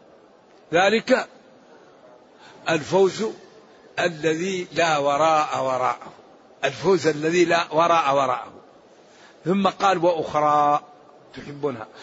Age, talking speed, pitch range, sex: 60-79, 75 wpm, 165-200 Hz, male